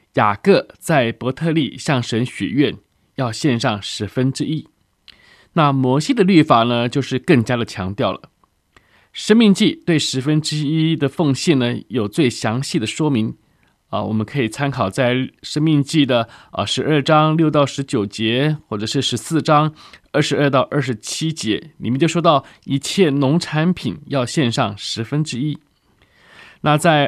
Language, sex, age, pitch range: Chinese, male, 20-39, 120-155 Hz